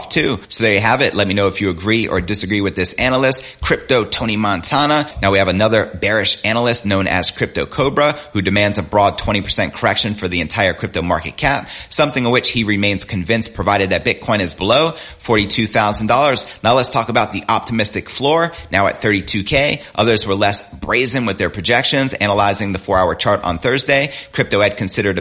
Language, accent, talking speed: English, American, 195 wpm